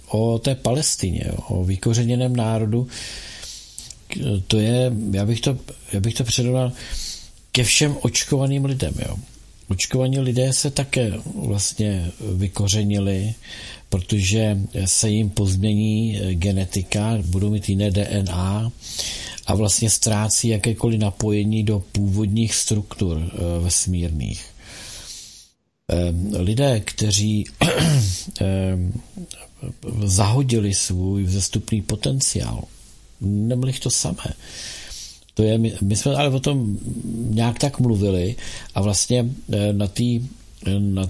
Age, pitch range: 50-69, 100-120 Hz